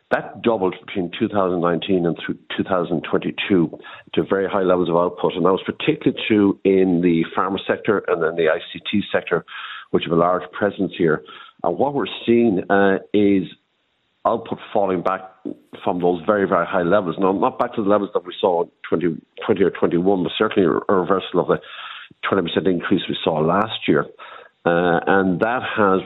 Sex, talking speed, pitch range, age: male, 180 wpm, 90-100 Hz, 50-69